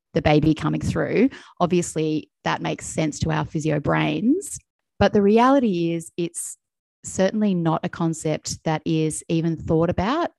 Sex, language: female, English